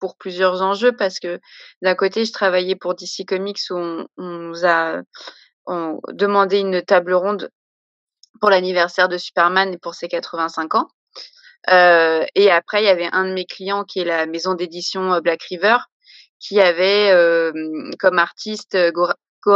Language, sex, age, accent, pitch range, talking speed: French, female, 20-39, French, 170-195 Hz, 165 wpm